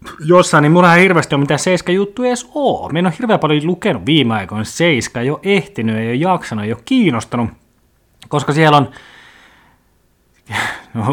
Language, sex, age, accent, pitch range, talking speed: Finnish, male, 20-39, native, 115-155 Hz, 145 wpm